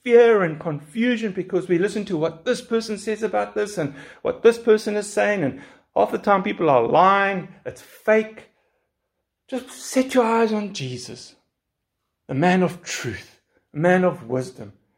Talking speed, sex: 170 wpm, male